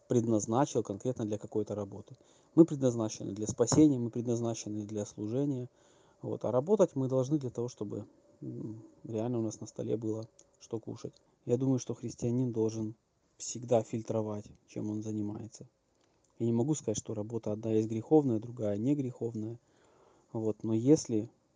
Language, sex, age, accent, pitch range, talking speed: Russian, male, 20-39, native, 110-120 Hz, 145 wpm